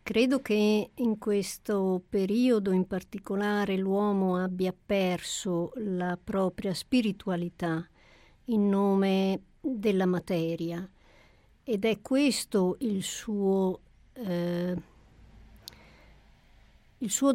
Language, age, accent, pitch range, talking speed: Italian, 60-79, native, 180-220 Hz, 80 wpm